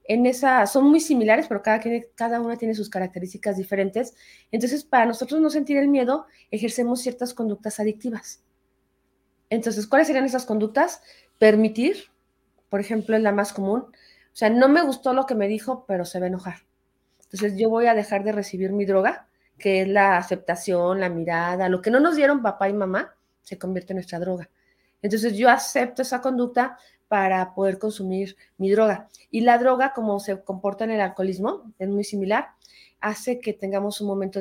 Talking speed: 185 wpm